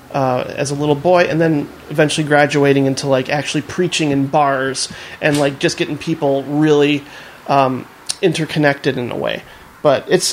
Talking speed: 170 wpm